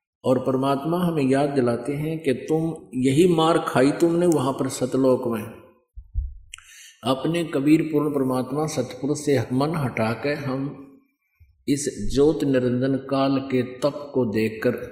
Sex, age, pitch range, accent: male, 50-69, 130-170 Hz, native